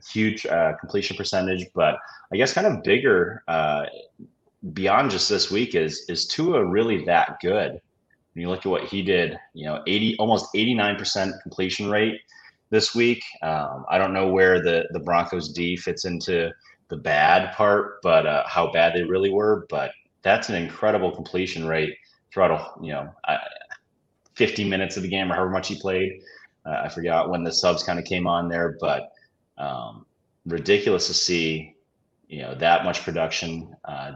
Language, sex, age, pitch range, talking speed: English, male, 30-49, 85-100 Hz, 180 wpm